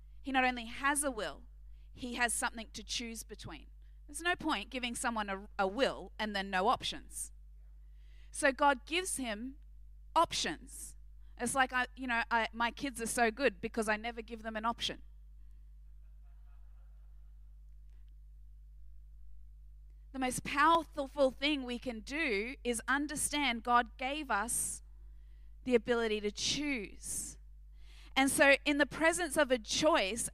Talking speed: 140 wpm